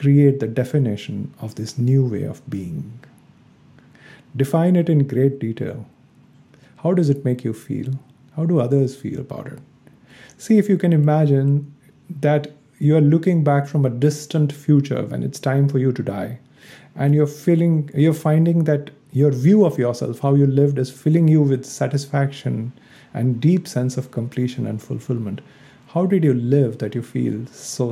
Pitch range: 125-150 Hz